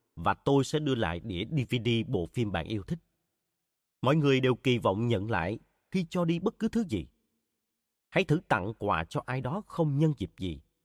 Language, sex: Vietnamese, male